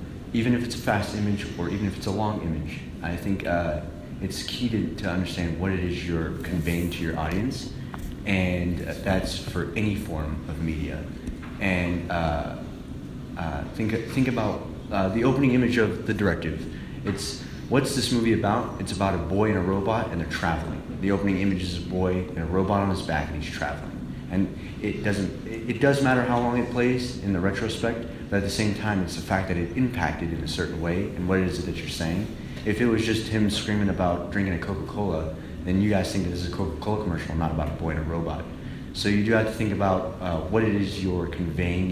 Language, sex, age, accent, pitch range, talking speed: English, male, 30-49, American, 85-105 Hz, 220 wpm